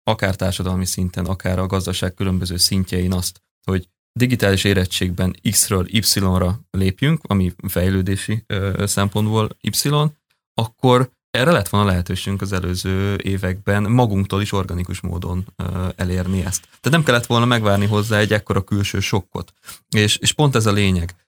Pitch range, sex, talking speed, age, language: 95-105 Hz, male, 140 wpm, 20-39, Hungarian